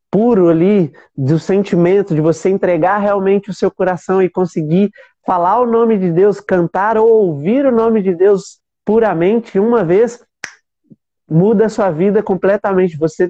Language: Portuguese